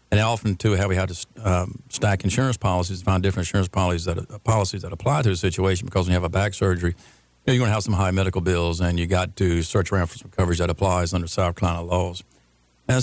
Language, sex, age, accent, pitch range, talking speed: English, male, 50-69, American, 90-105 Hz, 250 wpm